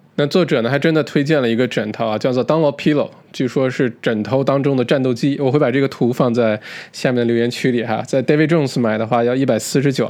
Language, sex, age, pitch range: Chinese, male, 20-39, 125-175 Hz